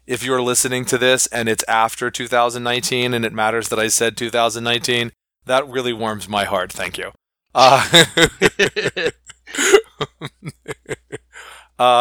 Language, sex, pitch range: English, male, 110-125 Hz